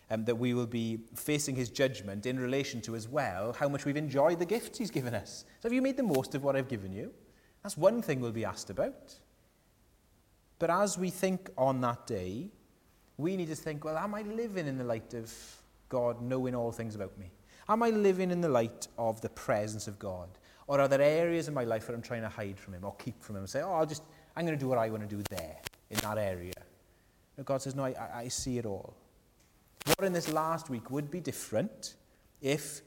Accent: British